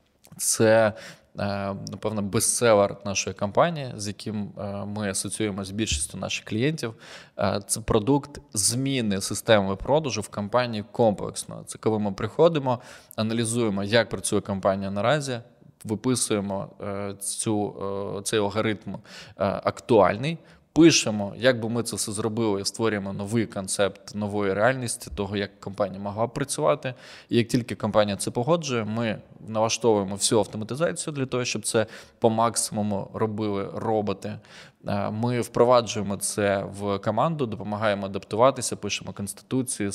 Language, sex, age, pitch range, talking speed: Ukrainian, male, 20-39, 100-120 Hz, 120 wpm